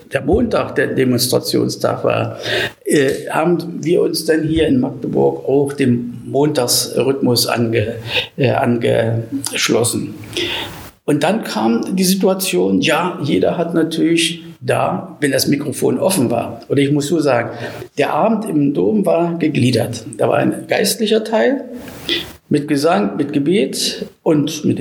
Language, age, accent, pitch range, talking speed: German, 50-69, German, 135-190 Hz, 135 wpm